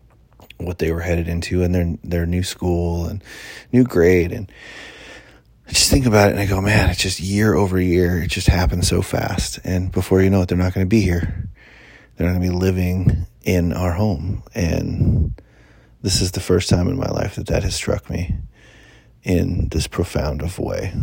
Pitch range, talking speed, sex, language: 85-105 Hz, 205 wpm, male, English